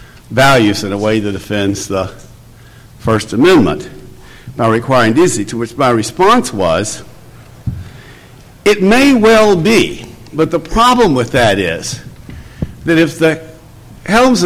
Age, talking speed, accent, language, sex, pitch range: 60-79, 130 wpm, American, English, male, 115-150 Hz